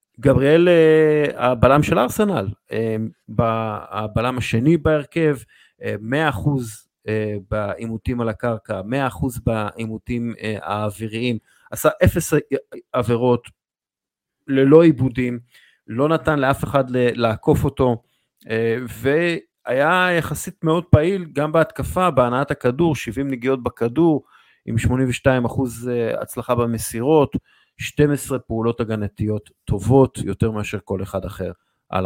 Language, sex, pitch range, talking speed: Hebrew, male, 115-150 Hz, 95 wpm